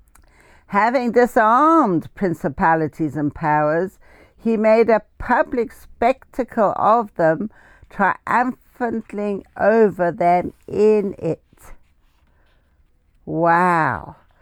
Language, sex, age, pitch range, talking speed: English, female, 60-79, 175-235 Hz, 75 wpm